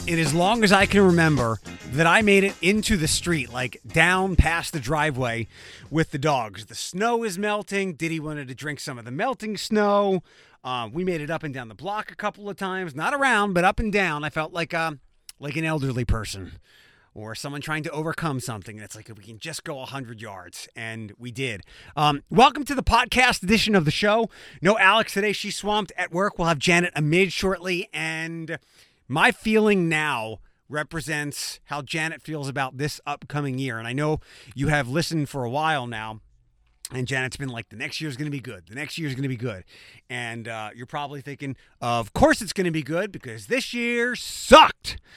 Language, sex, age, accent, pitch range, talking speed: English, male, 30-49, American, 125-180 Hz, 210 wpm